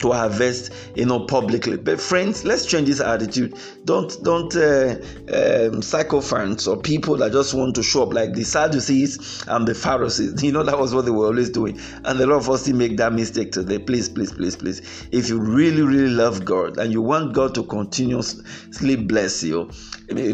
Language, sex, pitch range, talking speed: English, male, 110-145 Hz, 200 wpm